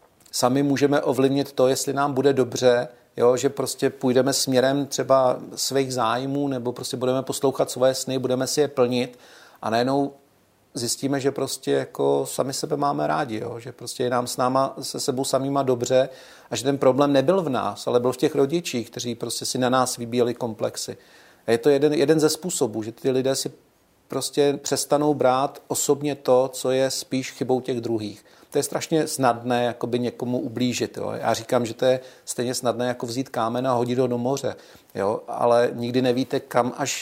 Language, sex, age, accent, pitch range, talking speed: Czech, male, 40-59, native, 120-135 Hz, 190 wpm